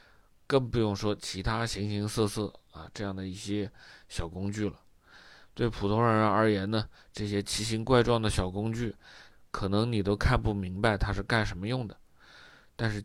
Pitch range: 100-115 Hz